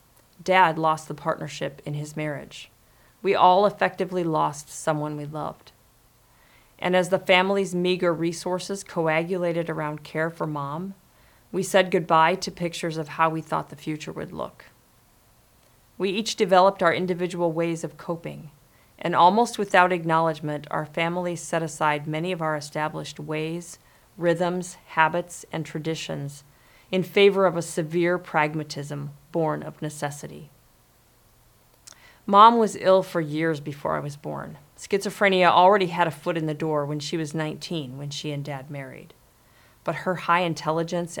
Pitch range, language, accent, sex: 150-180 Hz, English, American, female